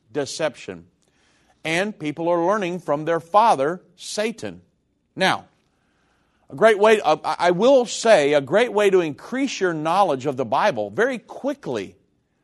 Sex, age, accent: male, 50-69, American